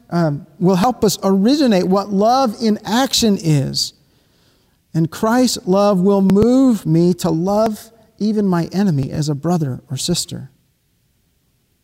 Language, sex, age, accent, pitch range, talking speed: English, male, 50-69, American, 160-215 Hz, 130 wpm